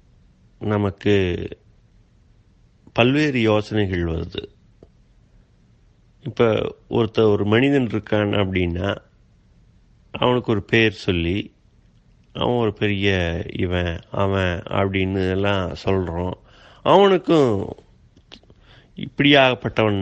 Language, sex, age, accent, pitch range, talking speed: Tamil, male, 30-49, native, 95-120 Hz, 70 wpm